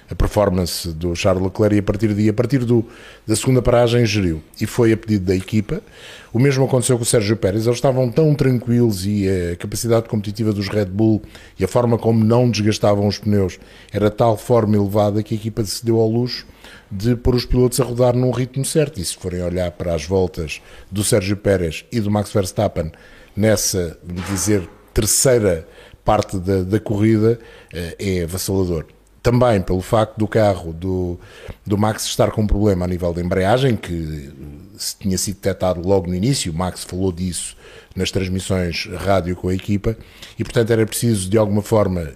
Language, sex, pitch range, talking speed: Portuguese, male, 95-120 Hz, 185 wpm